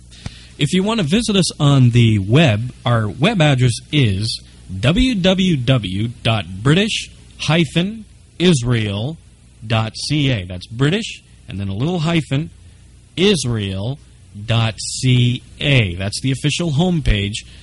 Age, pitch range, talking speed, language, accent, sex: 40-59, 105-150 Hz, 90 wpm, English, American, male